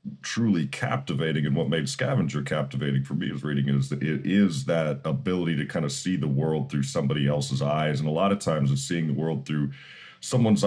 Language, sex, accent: English, male, American